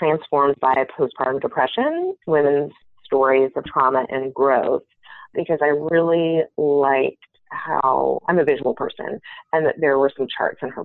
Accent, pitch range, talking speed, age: American, 135-165 Hz, 150 wpm, 30-49